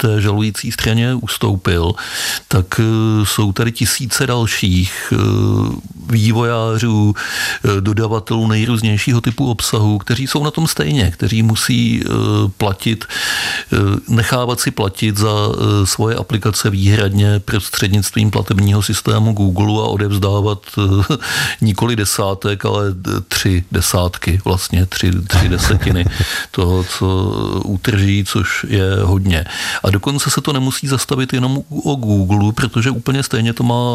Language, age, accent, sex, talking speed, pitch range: Czech, 50-69, native, male, 125 wpm, 100-115 Hz